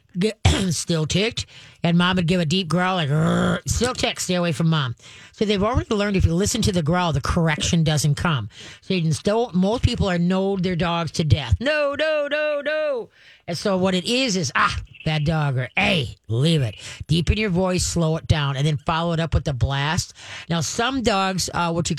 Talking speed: 215 wpm